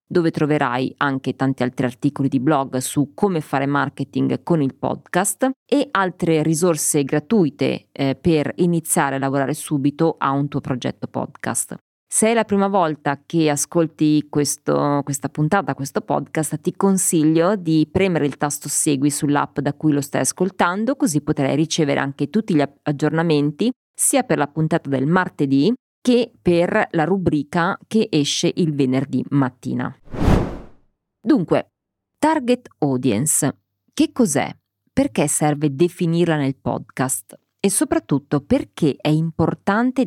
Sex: female